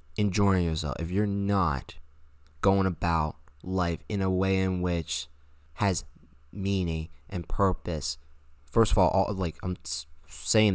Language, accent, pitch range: English, American, 75-105 Hz